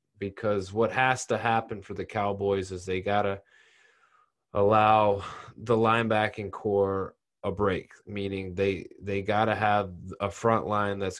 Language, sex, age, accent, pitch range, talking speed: English, male, 20-39, American, 95-110 Hz, 140 wpm